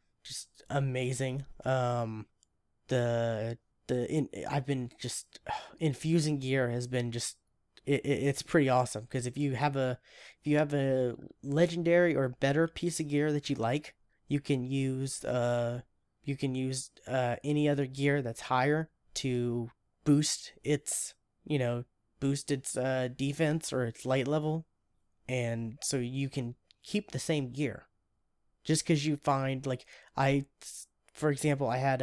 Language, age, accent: English, 10-29, American